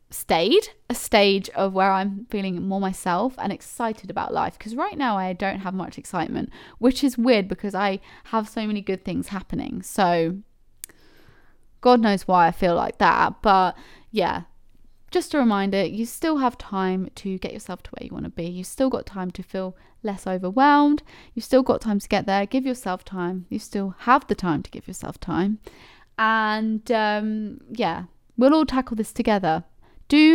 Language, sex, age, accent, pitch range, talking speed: English, female, 20-39, British, 195-250 Hz, 185 wpm